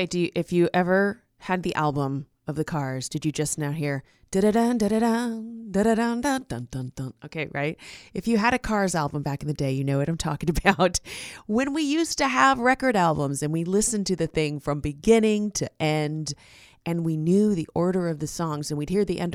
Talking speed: 215 wpm